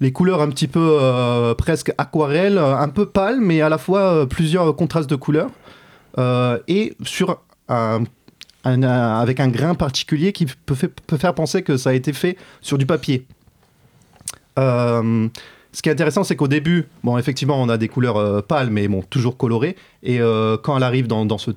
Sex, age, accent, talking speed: male, 30-49, French, 200 wpm